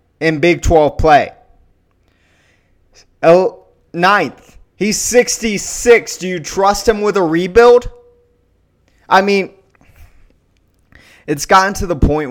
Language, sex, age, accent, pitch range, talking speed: English, male, 20-39, American, 100-155 Hz, 100 wpm